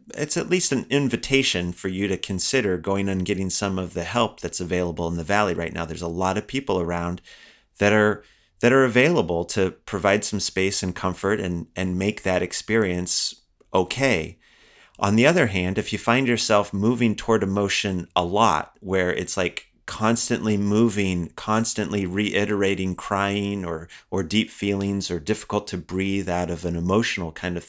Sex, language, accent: male, English, American